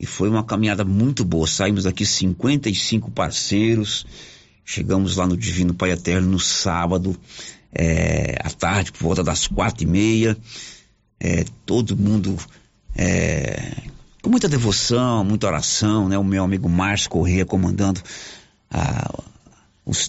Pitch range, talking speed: 95-125 Hz, 125 wpm